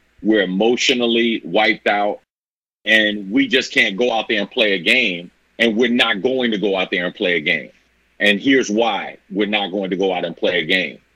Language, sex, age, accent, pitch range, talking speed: English, male, 40-59, American, 105-125 Hz, 215 wpm